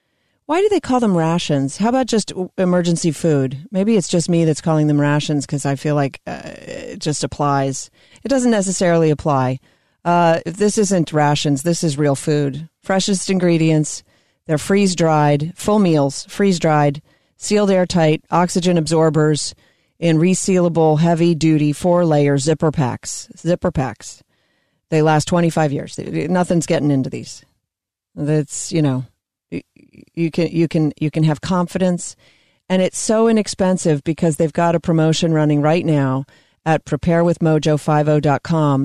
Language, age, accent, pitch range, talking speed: English, 40-59, American, 150-180 Hz, 140 wpm